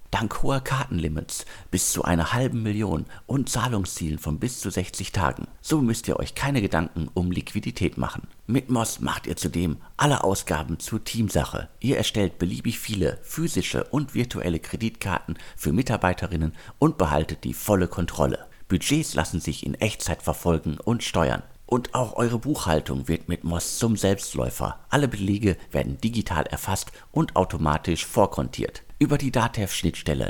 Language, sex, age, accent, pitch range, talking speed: German, male, 50-69, German, 80-115 Hz, 150 wpm